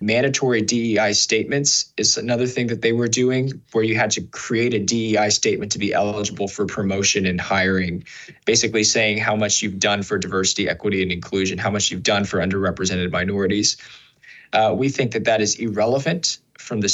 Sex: male